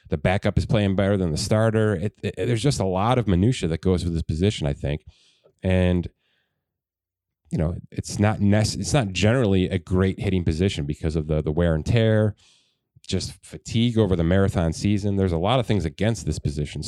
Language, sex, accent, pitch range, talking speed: English, male, American, 85-105 Hz, 205 wpm